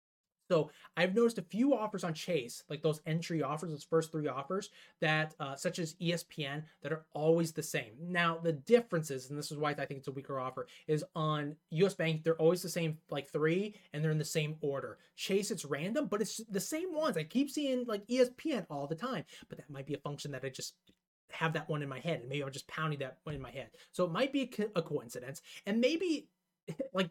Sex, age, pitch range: male, 20-39, 150-190 Hz